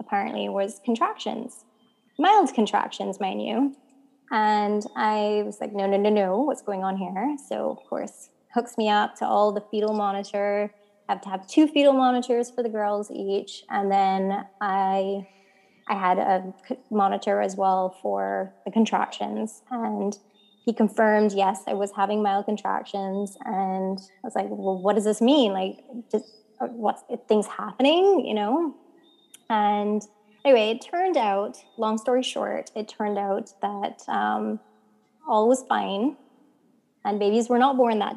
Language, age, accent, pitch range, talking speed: English, 20-39, American, 200-245 Hz, 155 wpm